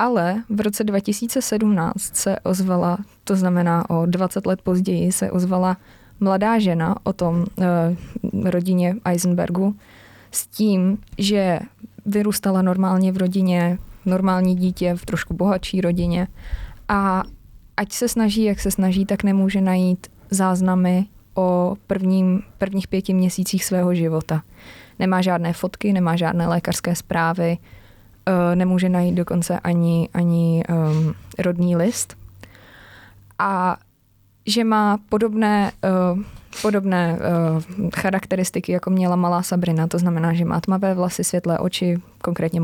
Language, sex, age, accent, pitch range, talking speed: Czech, female, 20-39, native, 170-195 Hz, 120 wpm